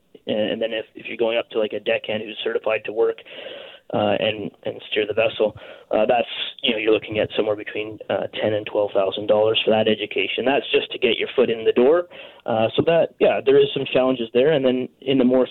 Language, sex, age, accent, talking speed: English, male, 20-39, American, 230 wpm